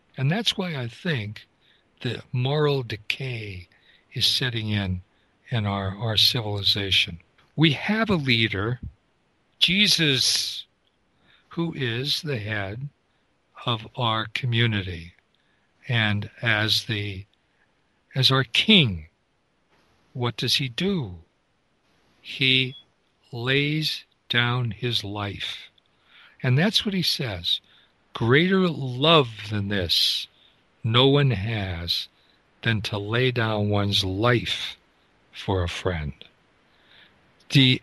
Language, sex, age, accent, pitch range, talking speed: English, male, 60-79, American, 100-135 Hz, 100 wpm